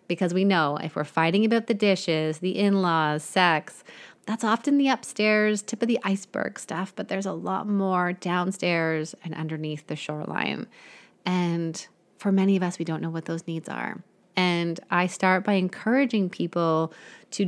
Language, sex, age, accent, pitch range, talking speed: English, female, 30-49, American, 170-215 Hz, 170 wpm